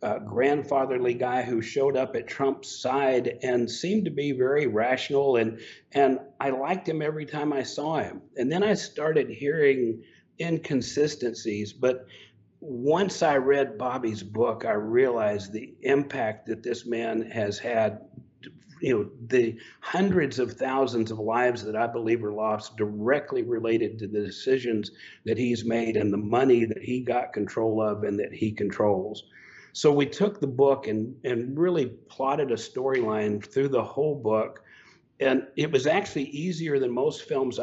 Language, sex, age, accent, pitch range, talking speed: English, male, 50-69, American, 115-140 Hz, 165 wpm